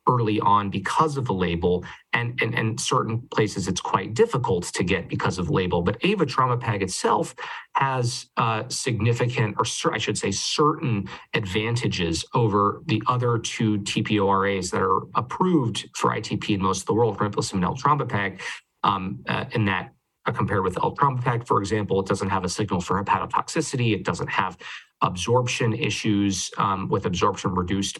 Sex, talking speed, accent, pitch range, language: male, 160 wpm, American, 100-125 Hz, English